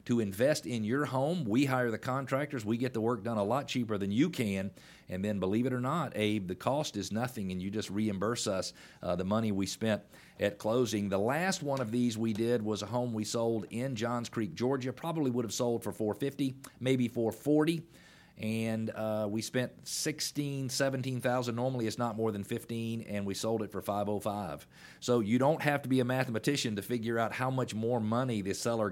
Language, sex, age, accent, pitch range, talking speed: English, male, 40-59, American, 110-130 Hz, 220 wpm